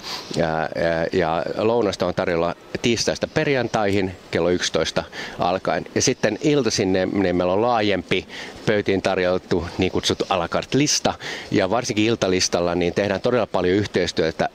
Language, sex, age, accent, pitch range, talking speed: Finnish, male, 30-49, native, 85-95 Hz, 125 wpm